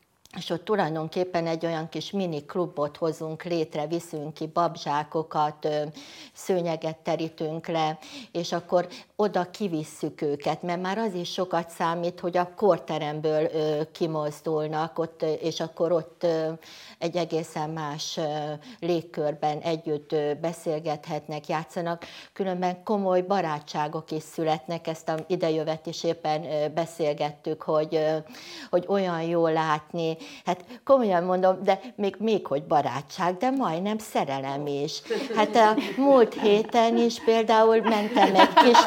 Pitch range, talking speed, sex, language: 160-200 Hz, 130 wpm, female, Hungarian